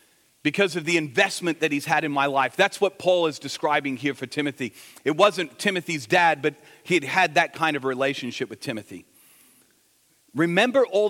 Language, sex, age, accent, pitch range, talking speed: English, male, 40-59, American, 155-195 Hz, 180 wpm